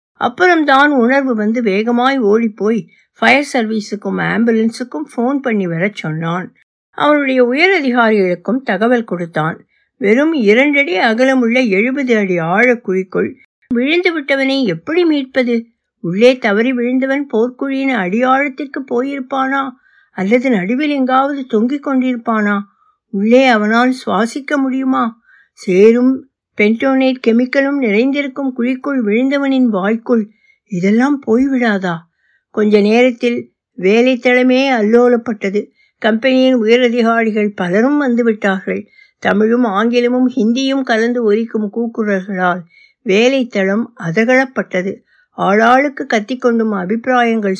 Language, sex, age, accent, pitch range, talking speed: Tamil, female, 60-79, native, 210-260 Hz, 70 wpm